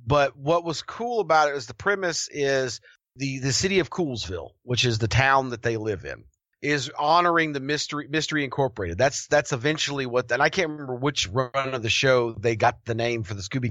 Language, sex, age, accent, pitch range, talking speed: English, male, 30-49, American, 120-150 Hz, 215 wpm